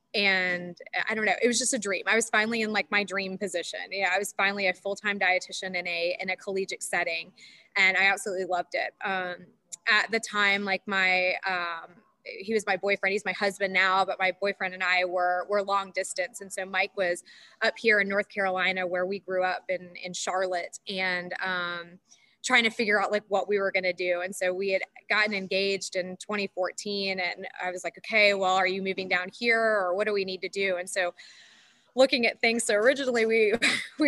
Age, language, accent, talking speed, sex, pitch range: 20-39, English, American, 215 wpm, female, 185-210 Hz